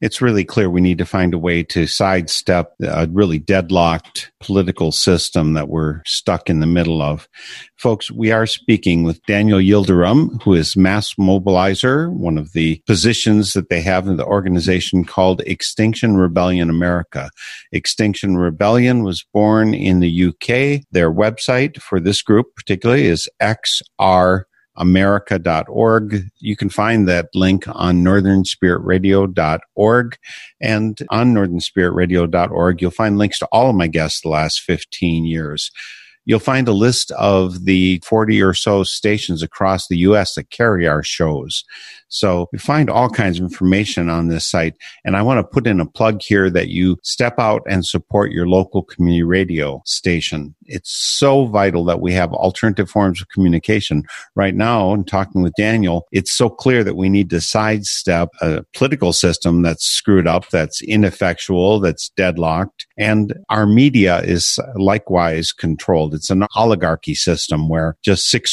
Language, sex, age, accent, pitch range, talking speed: English, male, 50-69, American, 85-105 Hz, 160 wpm